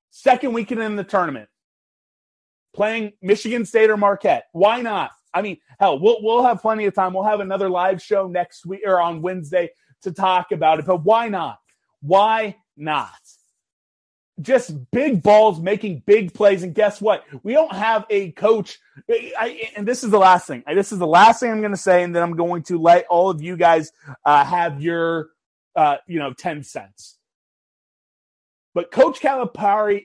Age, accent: 30-49, American